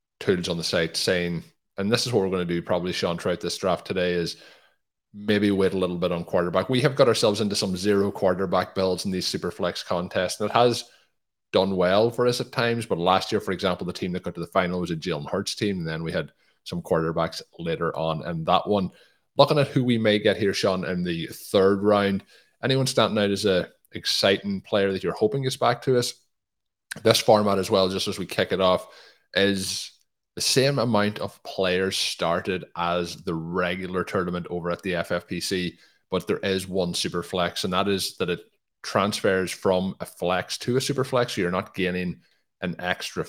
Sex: male